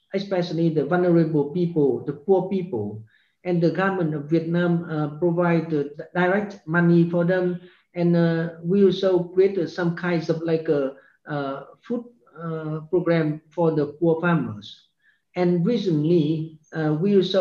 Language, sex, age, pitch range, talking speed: English, male, 50-69, 160-190 Hz, 140 wpm